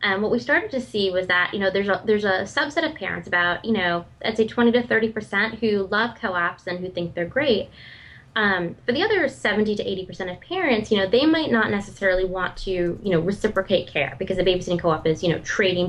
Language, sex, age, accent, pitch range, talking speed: English, female, 20-39, American, 185-225 Hz, 240 wpm